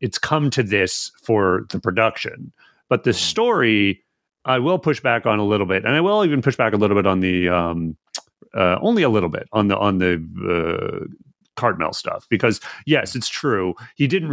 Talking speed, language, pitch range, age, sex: 200 wpm, English, 100-130 Hz, 30-49, male